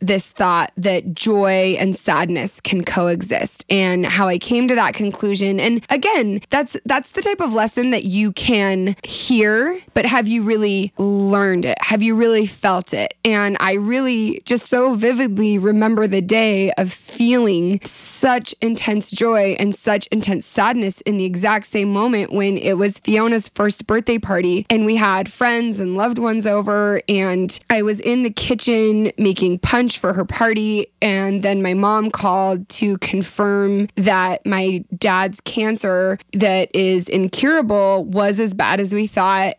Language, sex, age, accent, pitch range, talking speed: English, female, 20-39, American, 190-230 Hz, 160 wpm